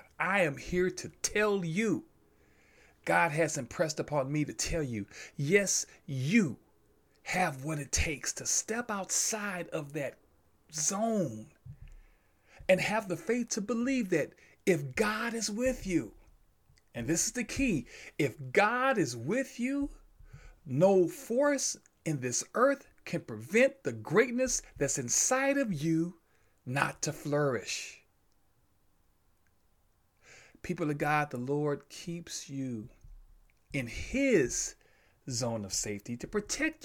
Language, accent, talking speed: English, American, 125 wpm